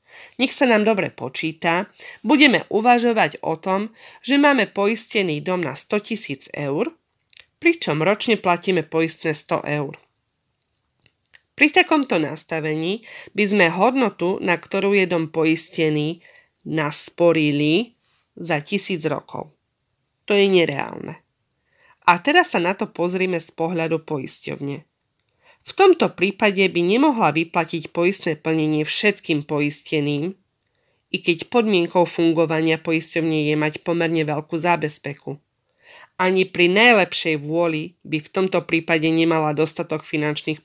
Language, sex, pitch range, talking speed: Slovak, female, 155-195 Hz, 120 wpm